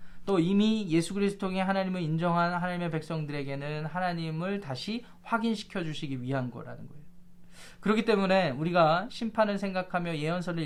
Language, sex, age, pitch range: Korean, male, 20-39, 150-185 Hz